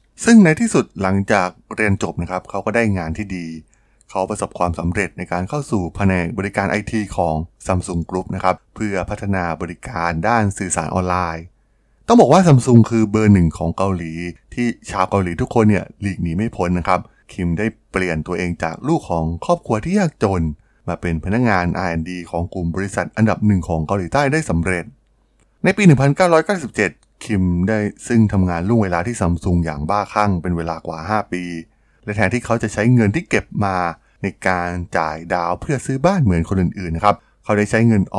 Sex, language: male, Thai